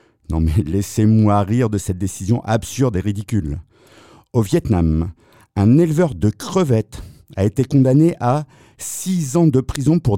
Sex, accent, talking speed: male, French, 145 wpm